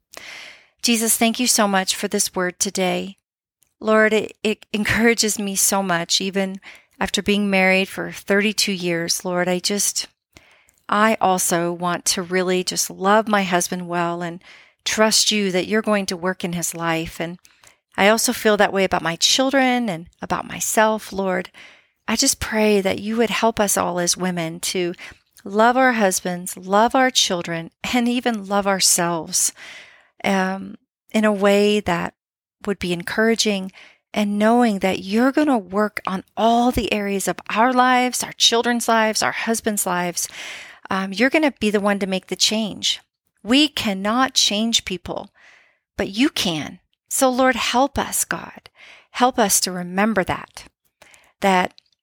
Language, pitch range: English, 185-225 Hz